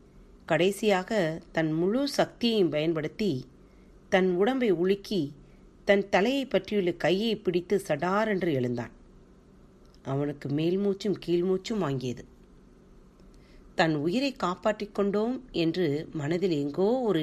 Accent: native